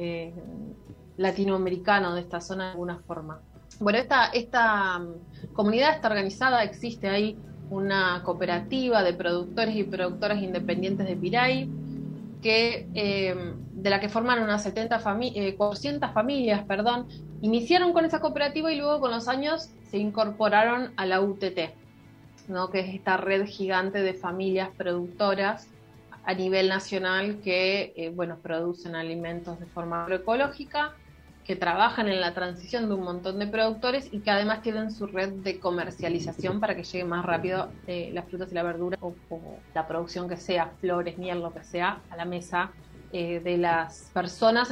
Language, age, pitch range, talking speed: Spanish, 30-49, 175-225 Hz, 160 wpm